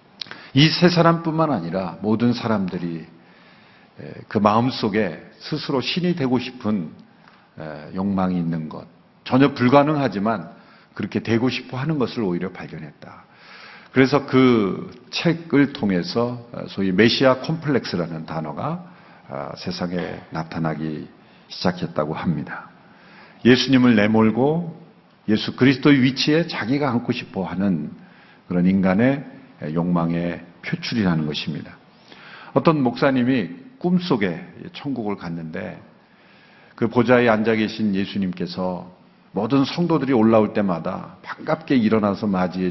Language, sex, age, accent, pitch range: Korean, male, 50-69, native, 90-130 Hz